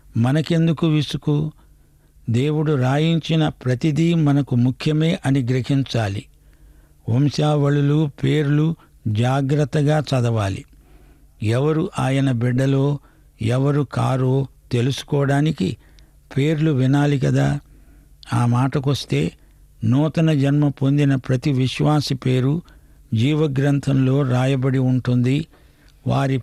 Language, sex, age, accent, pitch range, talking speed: English, male, 60-79, Indian, 130-145 Hz, 70 wpm